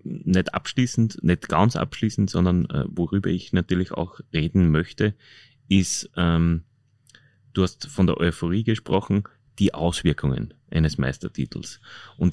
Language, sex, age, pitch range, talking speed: German, male, 30-49, 80-105 Hz, 125 wpm